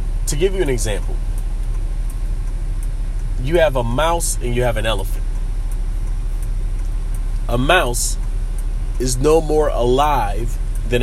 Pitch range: 100-125 Hz